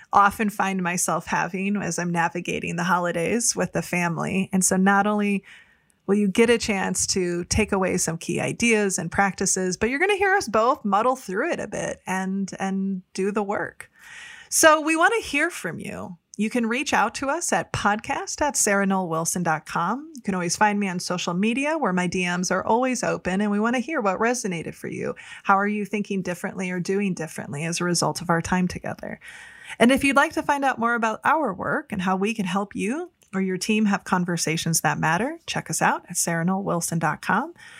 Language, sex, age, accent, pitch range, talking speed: English, female, 20-39, American, 180-235 Hz, 205 wpm